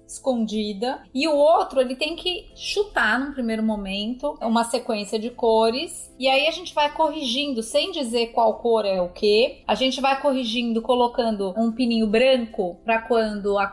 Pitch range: 230-290 Hz